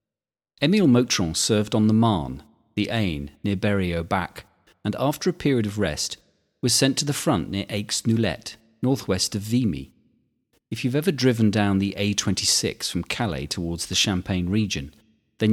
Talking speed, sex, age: 155 wpm, male, 40-59